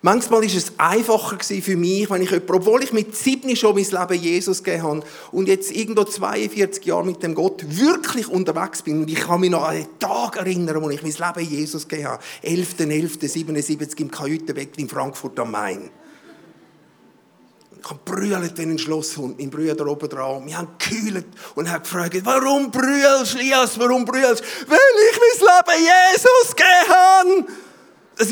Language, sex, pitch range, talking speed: English, male, 165-250 Hz, 175 wpm